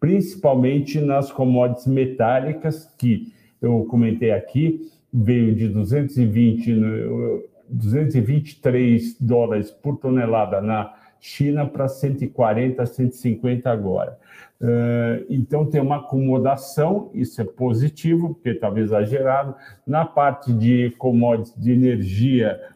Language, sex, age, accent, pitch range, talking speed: Portuguese, male, 60-79, Brazilian, 115-145 Hz, 95 wpm